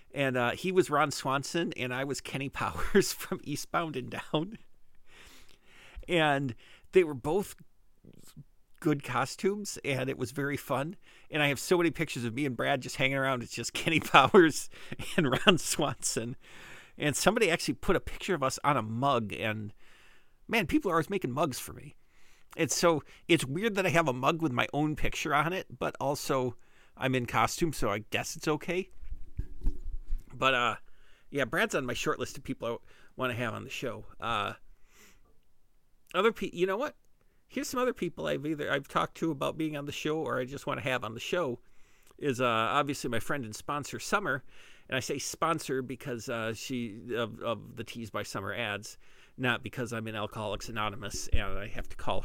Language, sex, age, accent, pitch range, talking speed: English, male, 50-69, American, 115-155 Hz, 195 wpm